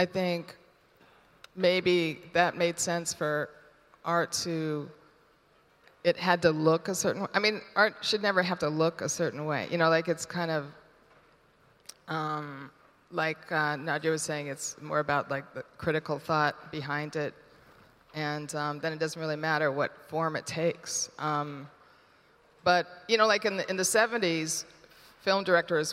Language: English